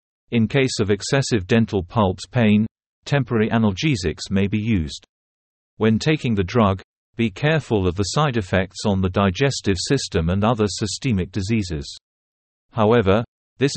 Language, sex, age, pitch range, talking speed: Vietnamese, male, 50-69, 95-125 Hz, 140 wpm